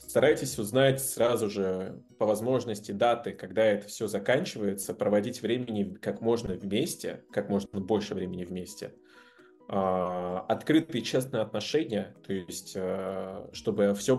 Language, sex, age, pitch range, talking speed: Russian, male, 20-39, 95-115 Hz, 135 wpm